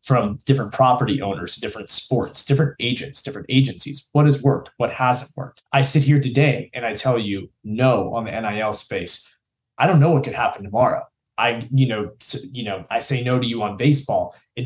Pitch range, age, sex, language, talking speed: 115-140 Hz, 20-39, male, English, 205 wpm